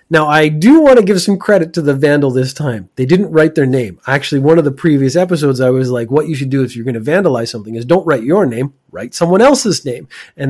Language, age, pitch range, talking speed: English, 30-49, 120-155 Hz, 270 wpm